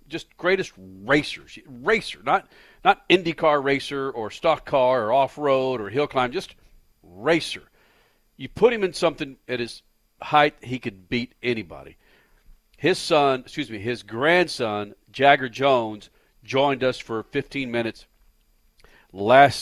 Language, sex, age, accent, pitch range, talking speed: English, male, 50-69, American, 125-155 Hz, 135 wpm